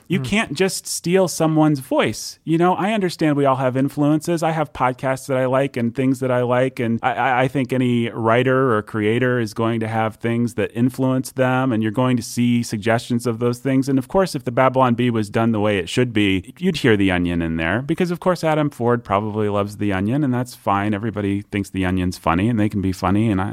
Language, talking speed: English, 235 wpm